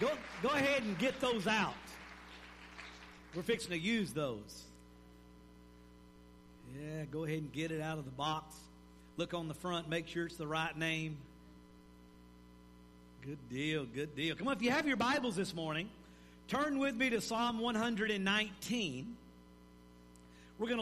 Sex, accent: male, American